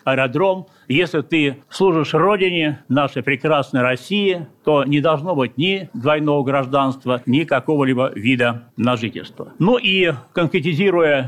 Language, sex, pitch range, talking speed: Russian, male, 130-155 Hz, 115 wpm